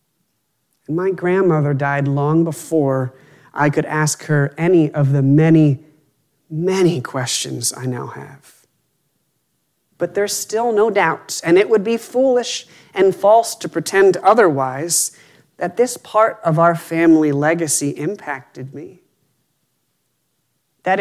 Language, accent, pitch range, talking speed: English, American, 150-210 Hz, 125 wpm